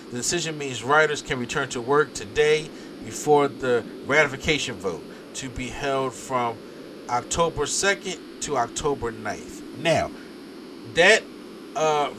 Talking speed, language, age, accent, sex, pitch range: 125 wpm, English, 30-49, American, male, 120-155 Hz